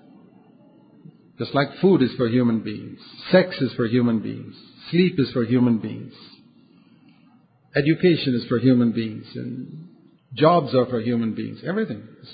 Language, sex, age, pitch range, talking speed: English, male, 50-69, 135-190 Hz, 145 wpm